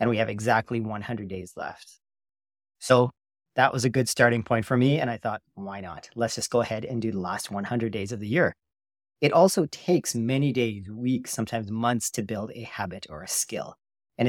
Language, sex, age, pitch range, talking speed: English, male, 40-59, 110-130 Hz, 210 wpm